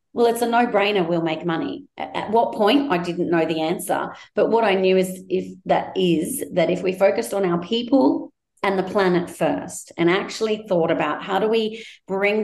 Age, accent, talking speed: 40-59, Australian, 210 wpm